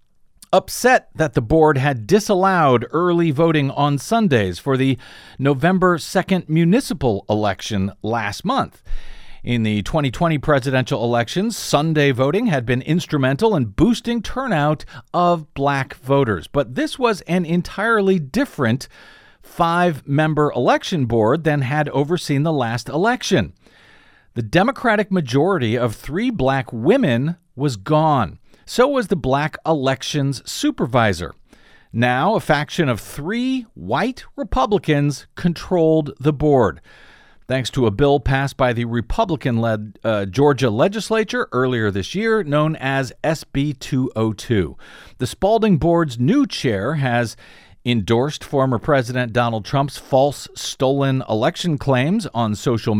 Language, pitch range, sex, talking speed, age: English, 125-170 Hz, male, 120 wpm, 50-69